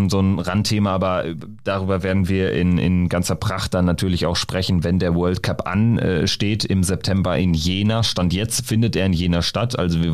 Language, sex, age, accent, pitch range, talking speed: German, male, 30-49, German, 90-110 Hz, 195 wpm